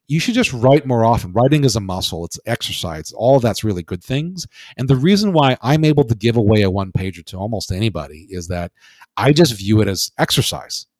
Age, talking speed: 40-59, 220 wpm